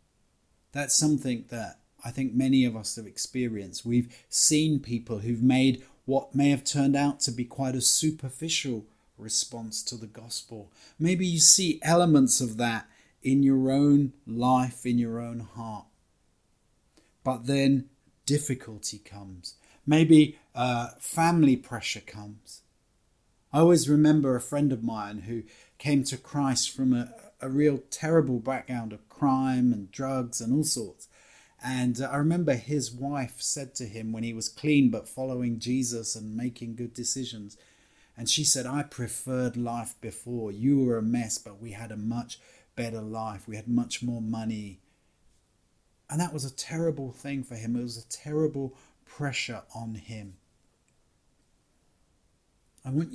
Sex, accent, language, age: male, British, English, 30-49